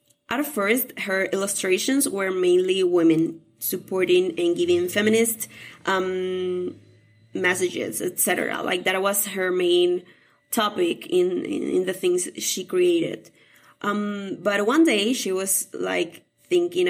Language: English